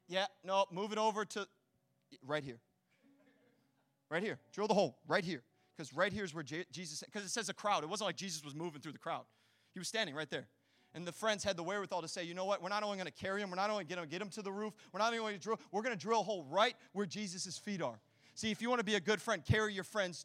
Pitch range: 170-270 Hz